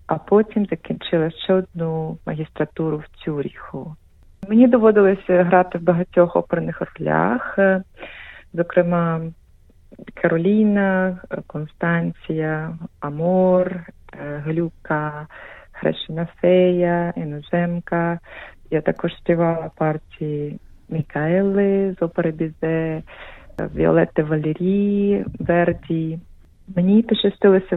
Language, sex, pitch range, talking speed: Ukrainian, female, 165-195 Hz, 80 wpm